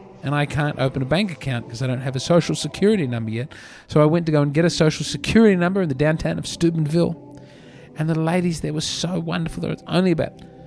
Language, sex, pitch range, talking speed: English, male, 130-170 Hz, 240 wpm